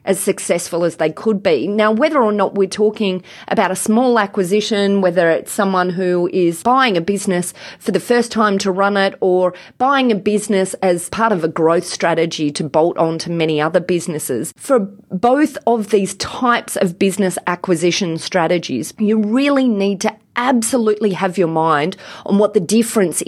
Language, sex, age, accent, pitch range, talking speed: English, female, 30-49, Australian, 165-215 Hz, 180 wpm